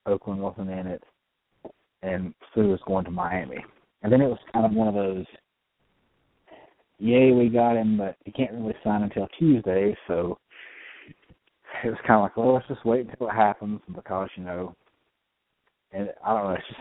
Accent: American